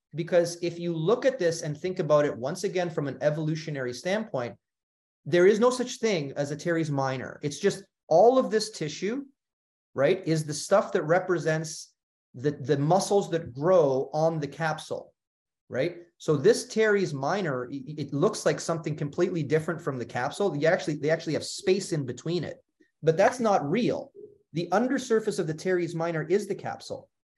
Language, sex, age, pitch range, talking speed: English, male, 30-49, 150-195 Hz, 175 wpm